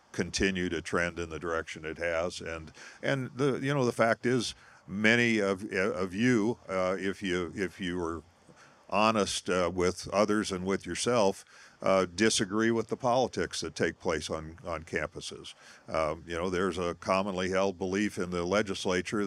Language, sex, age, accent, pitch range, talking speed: English, male, 50-69, American, 90-105 Hz, 170 wpm